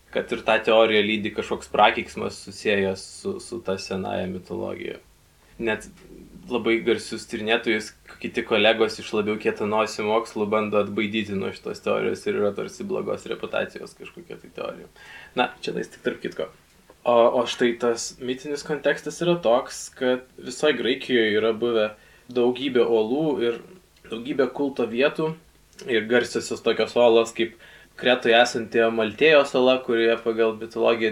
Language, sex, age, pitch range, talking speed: English, male, 20-39, 110-125 Hz, 140 wpm